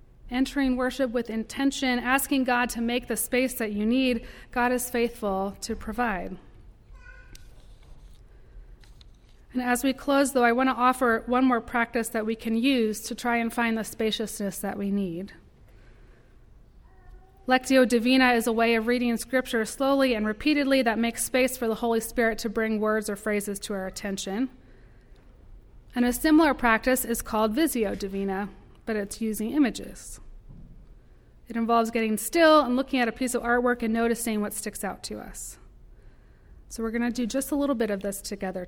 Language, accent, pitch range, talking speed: English, American, 220-255 Hz, 170 wpm